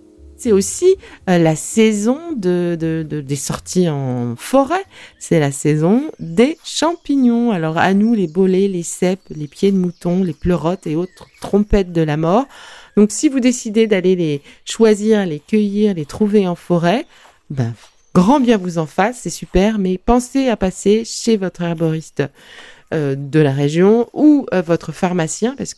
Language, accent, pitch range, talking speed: French, French, 155-220 Hz, 170 wpm